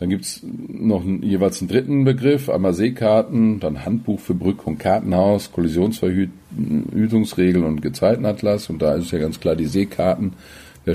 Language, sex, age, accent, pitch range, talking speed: German, male, 40-59, German, 80-115 Hz, 160 wpm